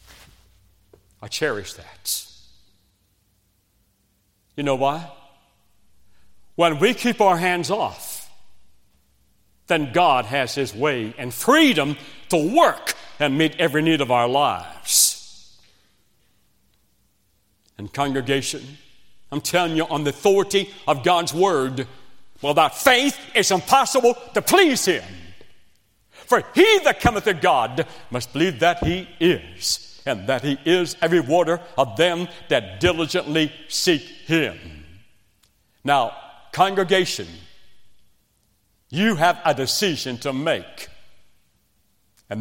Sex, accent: male, American